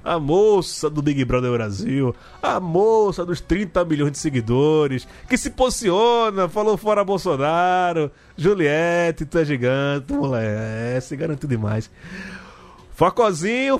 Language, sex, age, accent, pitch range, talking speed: Portuguese, male, 20-39, Brazilian, 130-190 Hz, 125 wpm